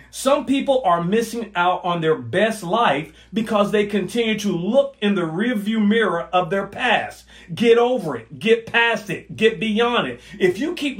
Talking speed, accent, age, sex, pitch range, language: 180 wpm, American, 40-59, male, 185-235 Hz, English